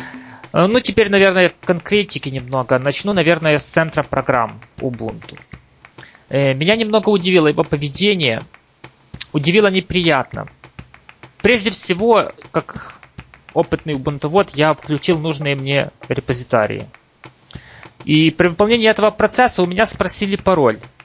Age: 30-49